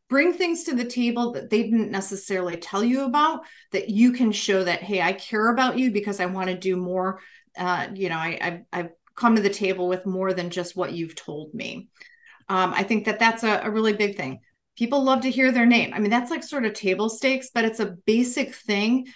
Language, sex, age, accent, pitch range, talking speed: English, female, 30-49, American, 190-245 Hz, 235 wpm